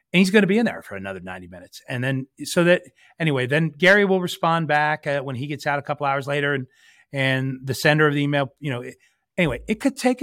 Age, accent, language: 40-59, American, English